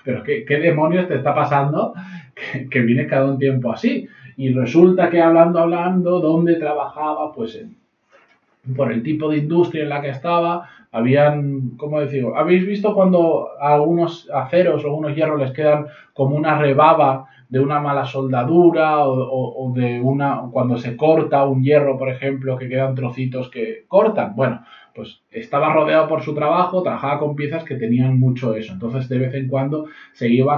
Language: Spanish